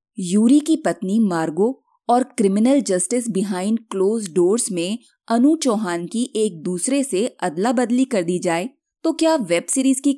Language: Hindi